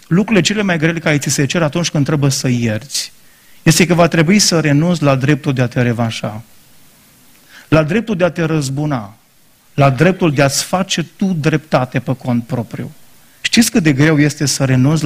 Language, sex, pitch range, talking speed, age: Romanian, male, 130-160 Hz, 190 wpm, 30-49